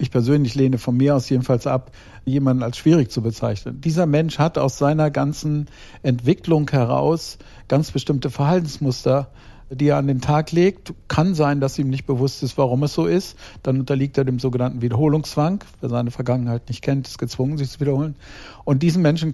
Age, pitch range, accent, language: 50-69, 125-150 Hz, German, German